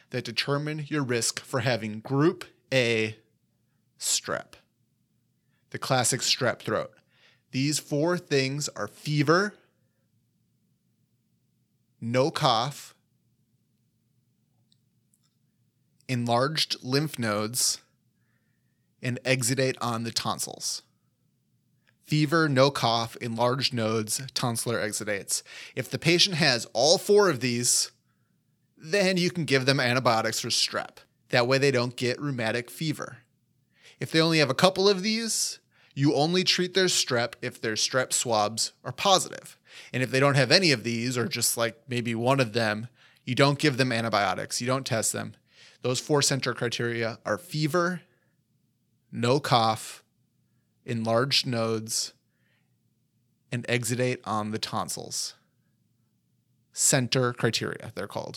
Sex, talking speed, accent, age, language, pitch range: male, 125 wpm, American, 30-49, English, 115-145 Hz